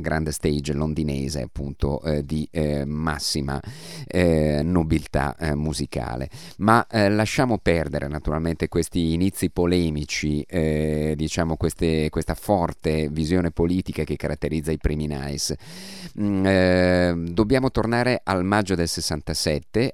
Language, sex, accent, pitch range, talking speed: Italian, male, native, 75-95 Hz, 120 wpm